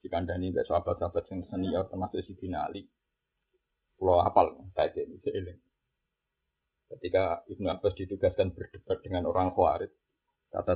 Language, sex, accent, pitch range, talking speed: Indonesian, male, native, 95-150 Hz, 125 wpm